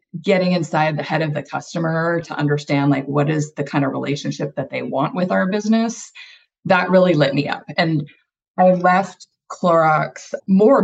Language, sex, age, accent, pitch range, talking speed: English, female, 30-49, American, 145-175 Hz, 175 wpm